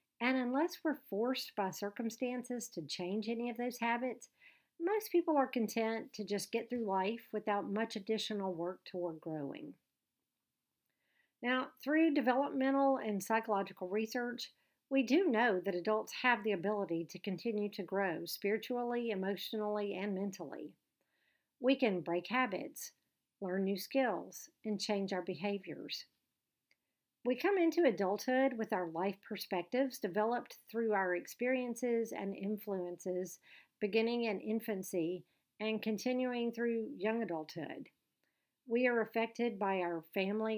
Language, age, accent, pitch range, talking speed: English, 50-69, American, 195-245 Hz, 130 wpm